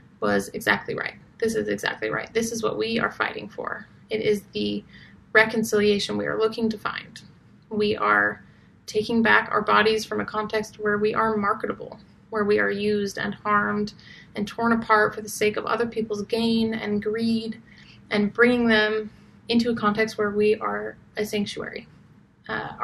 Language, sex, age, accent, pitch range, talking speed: English, female, 30-49, American, 205-225 Hz, 175 wpm